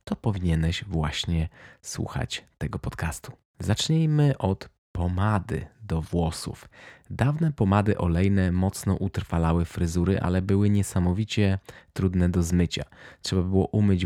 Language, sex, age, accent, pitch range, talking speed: Polish, male, 20-39, native, 85-105 Hz, 110 wpm